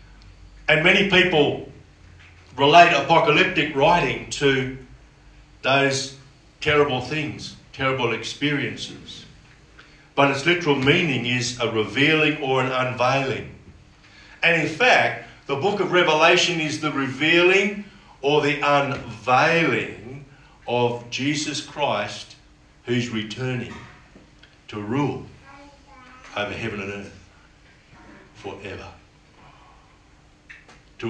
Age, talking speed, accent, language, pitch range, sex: 50-69, 95 wpm, Australian, English, 110-150 Hz, male